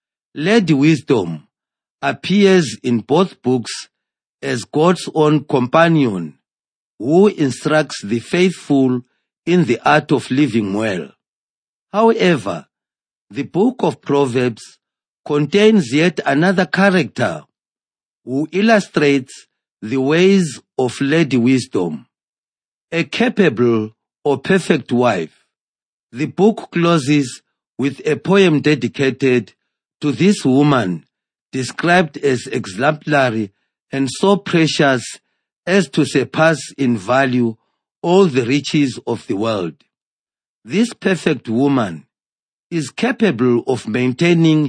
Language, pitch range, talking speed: English, 125-170 Hz, 100 wpm